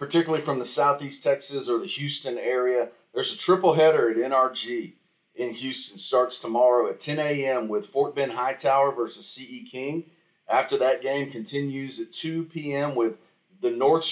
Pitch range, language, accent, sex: 115-160 Hz, English, American, male